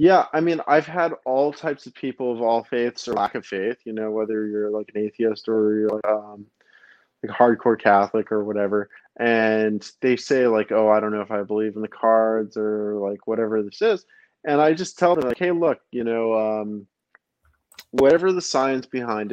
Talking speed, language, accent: 205 wpm, English, American